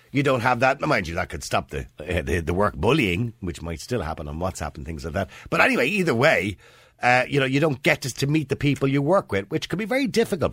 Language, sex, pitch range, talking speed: English, male, 90-125 Hz, 270 wpm